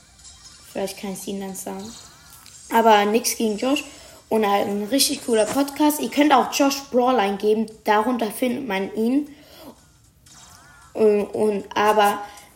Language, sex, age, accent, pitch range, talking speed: German, female, 20-39, German, 200-275 Hz, 140 wpm